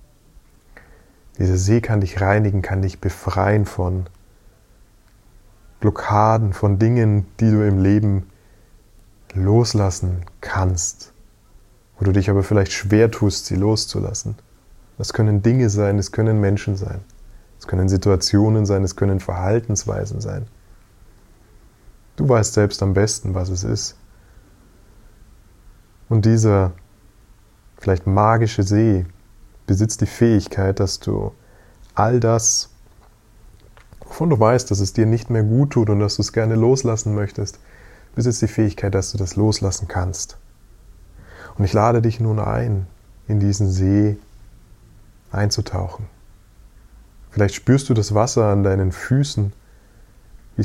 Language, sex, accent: German, male, German